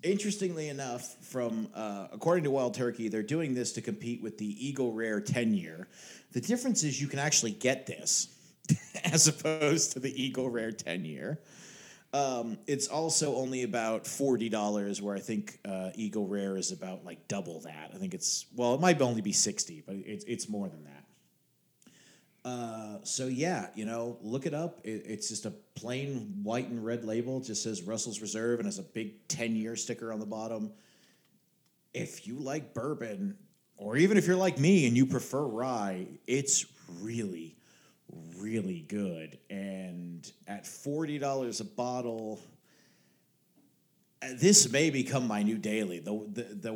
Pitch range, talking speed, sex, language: 105-140 Hz, 170 wpm, male, English